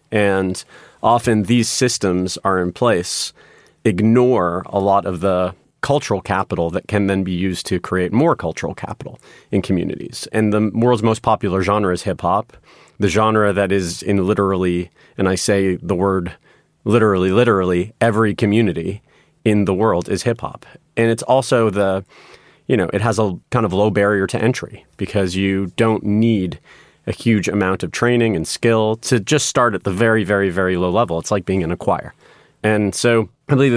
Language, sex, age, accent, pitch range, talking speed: English, male, 30-49, American, 95-110 Hz, 180 wpm